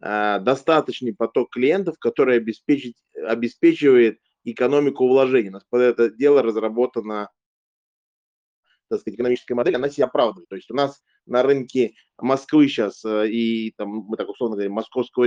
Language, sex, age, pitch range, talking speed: Russian, male, 20-39, 115-145 Hz, 140 wpm